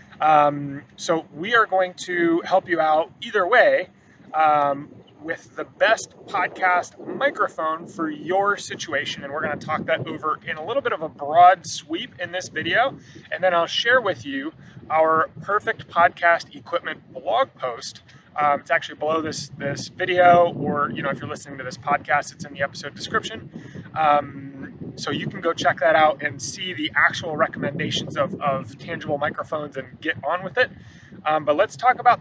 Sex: male